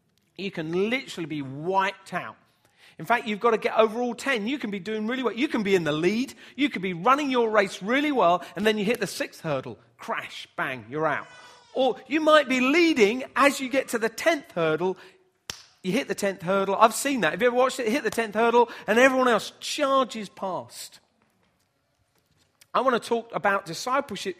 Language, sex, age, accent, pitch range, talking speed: English, male, 40-59, British, 165-240 Hz, 215 wpm